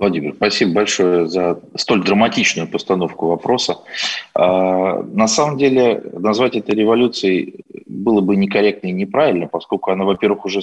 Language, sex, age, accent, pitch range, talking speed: Russian, male, 30-49, native, 90-115 Hz, 130 wpm